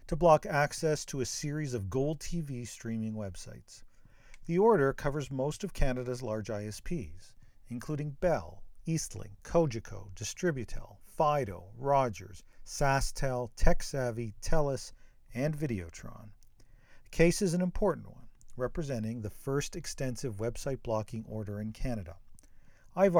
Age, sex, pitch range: 40-59, male, 110-150 Hz